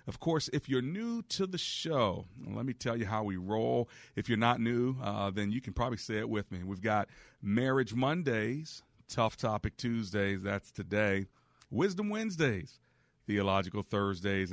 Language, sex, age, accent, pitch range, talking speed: English, male, 40-59, American, 105-125 Hz, 170 wpm